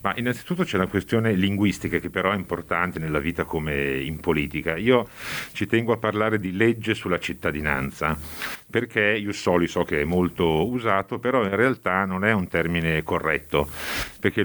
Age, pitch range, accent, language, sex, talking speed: 50-69, 90-120 Hz, native, Italian, male, 165 wpm